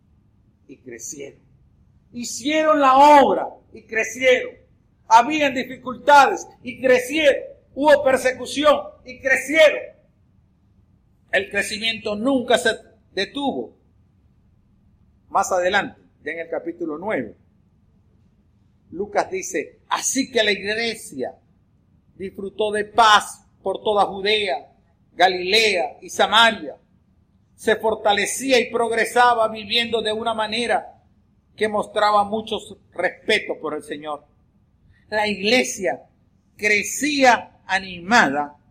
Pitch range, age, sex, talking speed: 185-260 Hz, 50-69, male, 95 wpm